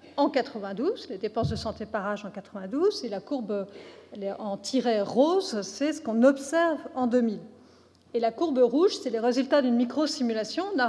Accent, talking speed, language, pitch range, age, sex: French, 180 wpm, French, 230-305 Hz, 40-59, female